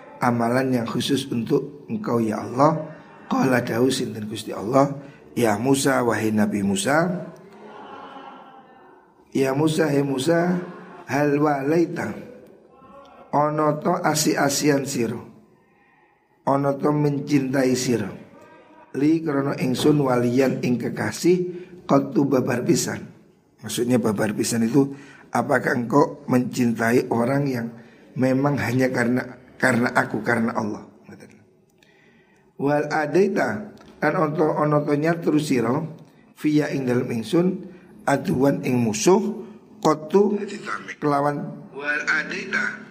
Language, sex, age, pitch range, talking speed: Indonesian, male, 50-69, 120-155 Hz, 85 wpm